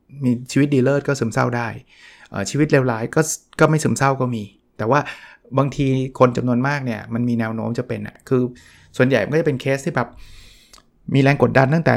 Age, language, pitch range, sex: 20-39, Thai, 120-150 Hz, male